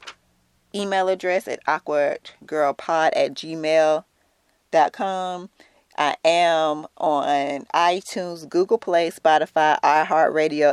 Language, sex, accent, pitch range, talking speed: English, female, American, 130-165 Hz, 80 wpm